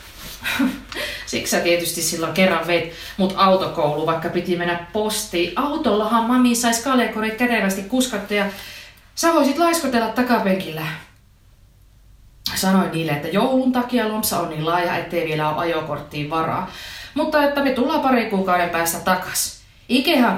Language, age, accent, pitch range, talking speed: Finnish, 30-49, native, 155-220 Hz, 130 wpm